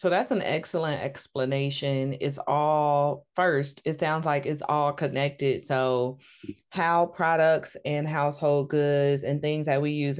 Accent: American